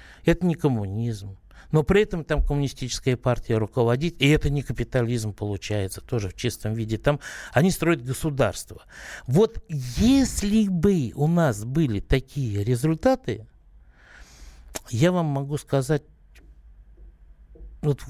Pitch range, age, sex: 110-165 Hz, 60-79, male